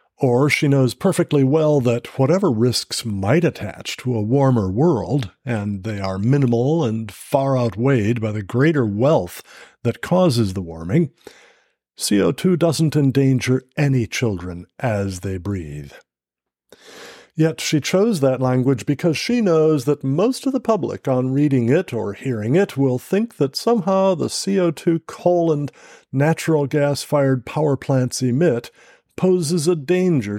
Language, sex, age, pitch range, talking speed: English, male, 50-69, 115-160 Hz, 140 wpm